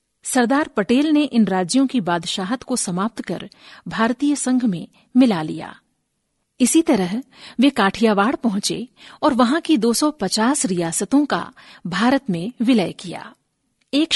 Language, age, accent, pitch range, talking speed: Hindi, 50-69, native, 200-275 Hz, 130 wpm